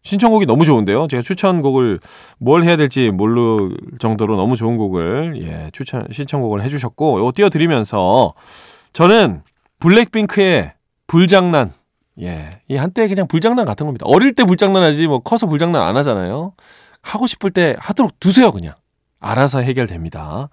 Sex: male